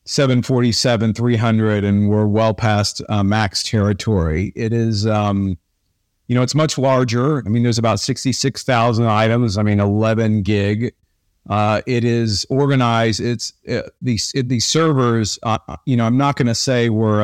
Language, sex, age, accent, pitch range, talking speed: English, male, 40-59, American, 105-125 Hz, 160 wpm